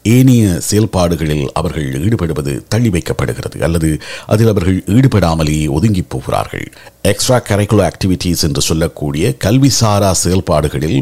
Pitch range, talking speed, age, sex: 85-115 Hz, 105 wpm, 50-69, male